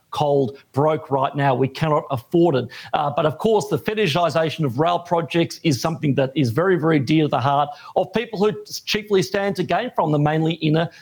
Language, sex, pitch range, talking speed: English, male, 150-195 Hz, 205 wpm